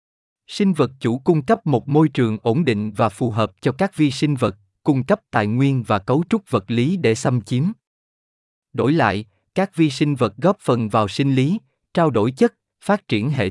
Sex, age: male, 20-39